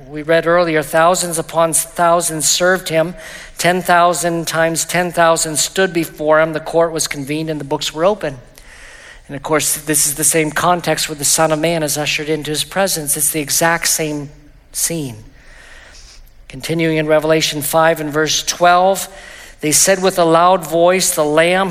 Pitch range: 155-180 Hz